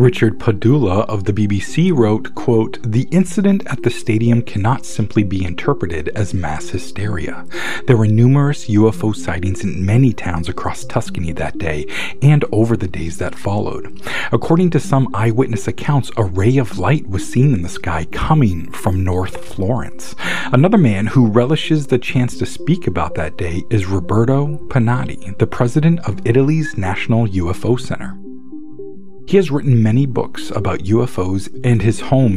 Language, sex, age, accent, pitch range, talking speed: English, male, 40-59, American, 95-125 Hz, 160 wpm